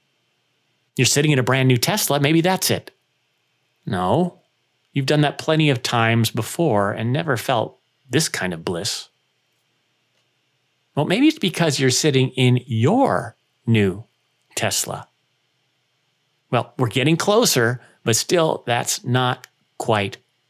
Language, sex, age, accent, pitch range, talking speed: English, male, 40-59, American, 120-150 Hz, 130 wpm